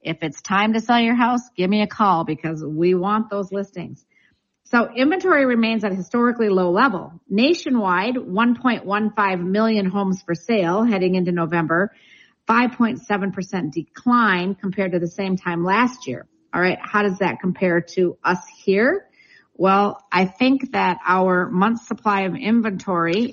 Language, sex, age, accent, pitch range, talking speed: English, female, 50-69, American, 170-225 Hz, 155 wpm